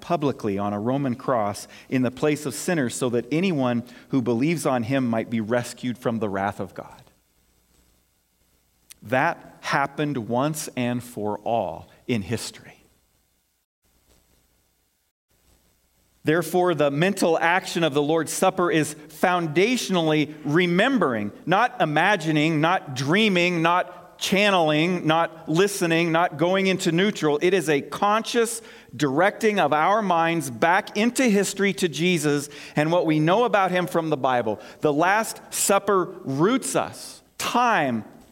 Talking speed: 130 wpm